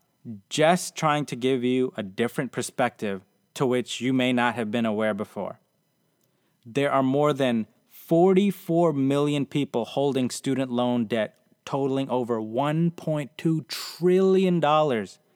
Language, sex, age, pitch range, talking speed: English, male, 30-49, 130-165 Hz, 125 wpm